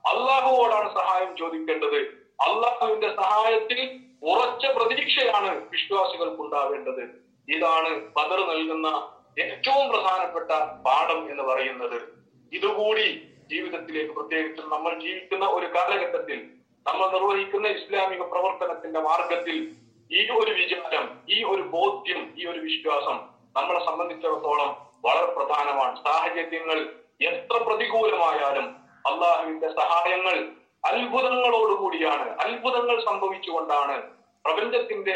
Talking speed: 90 wpm